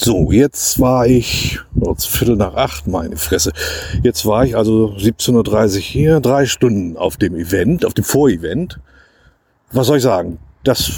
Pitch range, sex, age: 110-145 Hz, male, 50-69